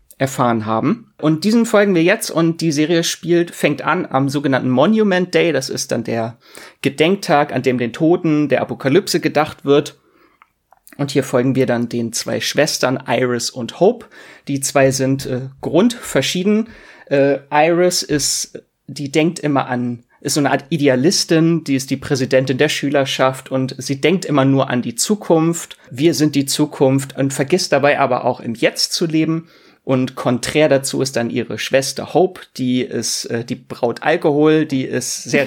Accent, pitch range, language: German, 130-155 Hz, German